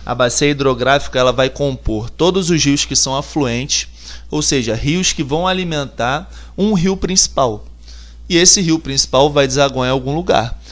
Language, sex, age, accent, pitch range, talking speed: Portuguese, male, 20-39, Brazilian, 125-175 Hz, 160 wpm